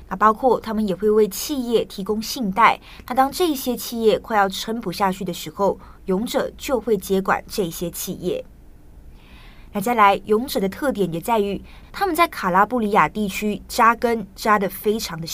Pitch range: 190-235 Hz